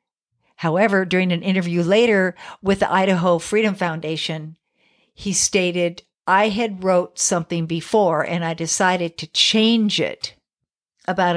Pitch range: 170-215 Hz